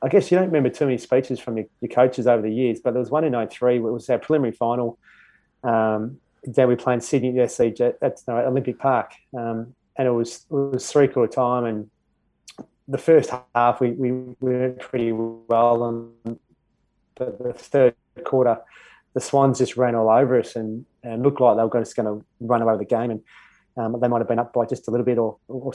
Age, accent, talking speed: 20-39, Australian, 215 wpm